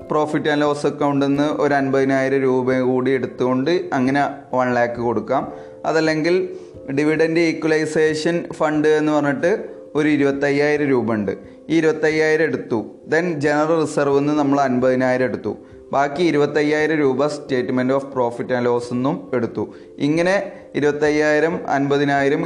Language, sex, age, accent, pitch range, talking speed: Malayalam, male, 20-39, native, 130-155 Hz, 125 wpm